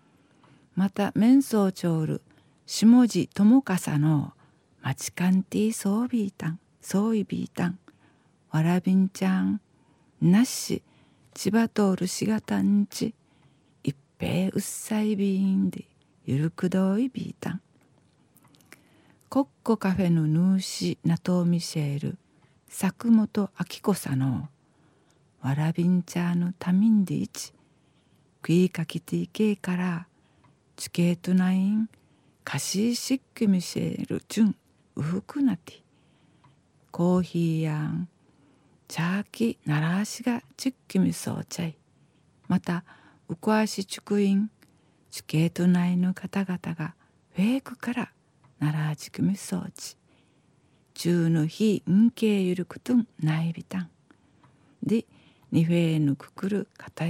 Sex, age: female, 50-69